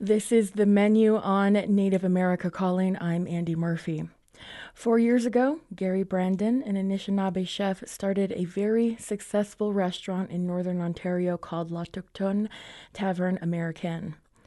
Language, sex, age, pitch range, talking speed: English, female, 20-39, 185-220 Hz, 135 wpm